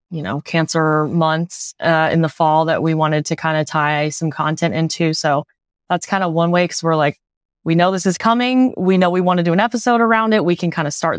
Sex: female